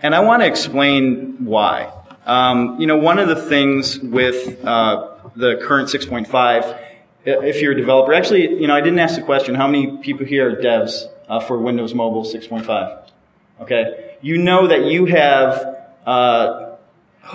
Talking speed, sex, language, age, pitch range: 165 wpm, male, English, 30-49, 120-145 Hz